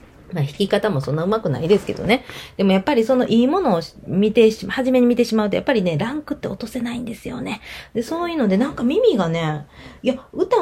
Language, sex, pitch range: Japanese, female, 165-250 Hz